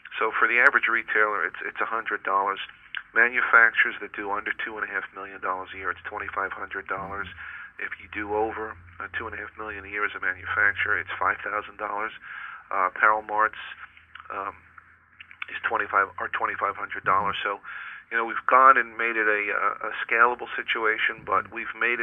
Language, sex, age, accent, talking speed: English, male, 40-59, American, 195 wpm